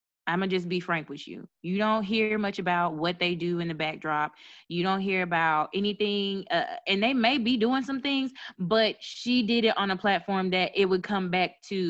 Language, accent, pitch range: English, American, 165-220 Hz